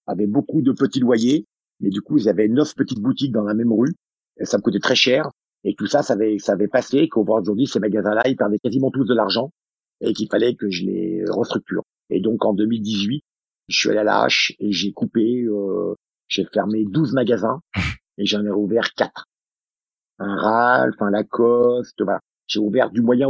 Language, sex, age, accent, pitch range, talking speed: French, male, 50-69, French, 110-135 Hz, 205 wpm